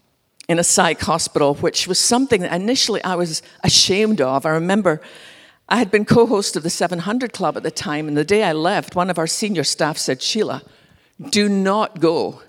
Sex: female